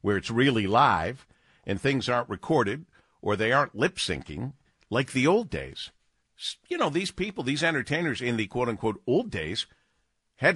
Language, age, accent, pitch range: English, 50-69, American, 105-145 Hz